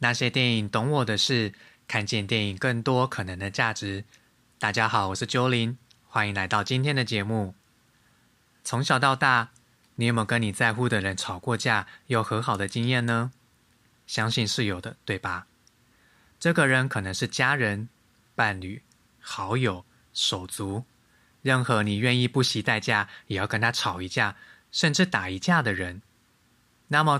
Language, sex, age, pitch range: Chinese, male, 20-39, 105-125 Hz